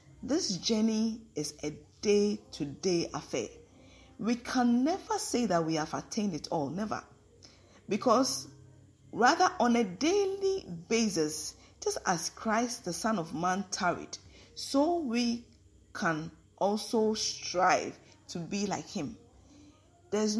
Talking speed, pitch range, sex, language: 120 wpm, 165-235 Hz, female, English